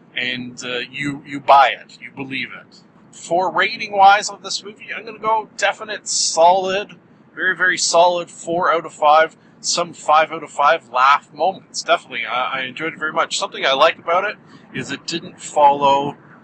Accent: American